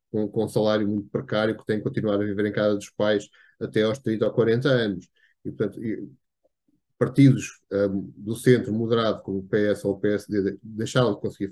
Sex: male